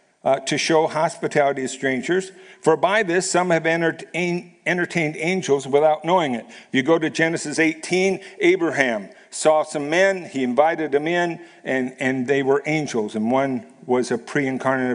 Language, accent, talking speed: English, American, 155 wpm